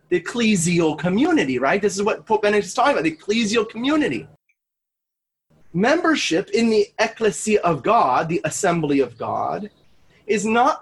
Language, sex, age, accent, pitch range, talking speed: English, male, 30-49, American, 190-300 Hz, 150 wpm